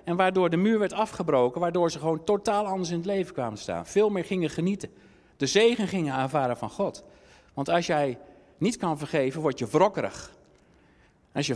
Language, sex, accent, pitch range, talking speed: Dutch, male, Dutch, 145-200 Hz, 190 wpm